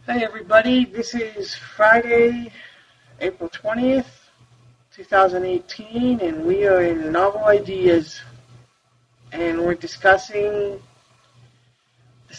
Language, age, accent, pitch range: English, 30-49, American, 120-180 Hz